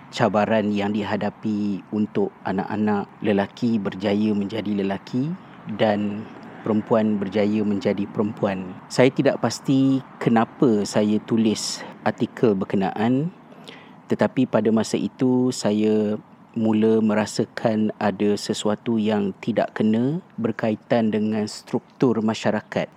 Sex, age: male, 40-59